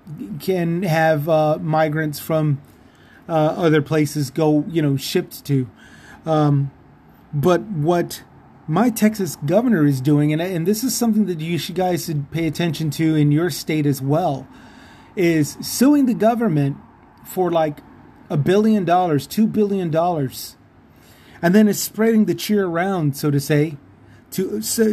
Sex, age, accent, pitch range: male, 30-49, American, 150-185 Hz